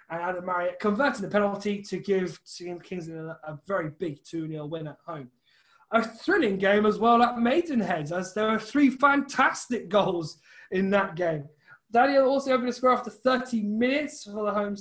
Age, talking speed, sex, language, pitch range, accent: 20-39, 180 wpm, male, English, 180-235 Hz, British